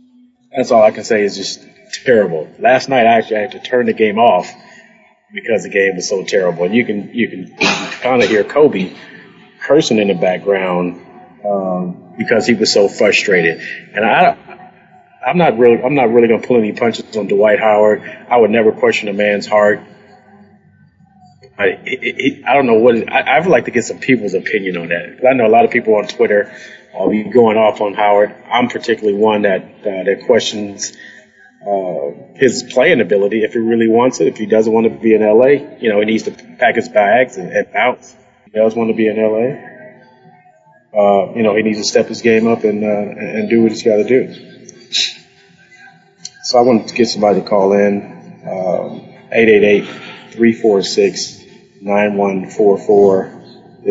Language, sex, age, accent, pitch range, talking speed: English, male, 30-49, American, 100-115 Hz, 190 wpm